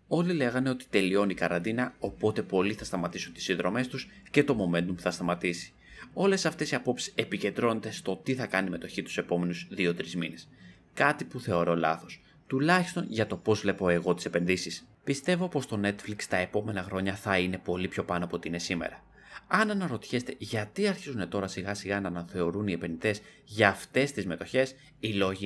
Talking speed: 185 wpm